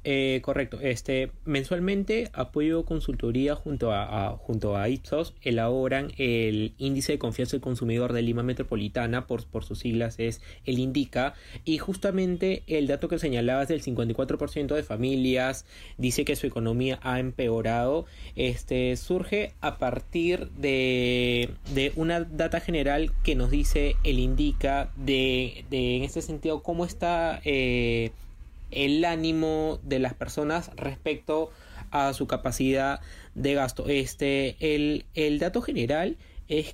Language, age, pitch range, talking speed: Spanish, 20-39, 125-160 Hz, 135 wpm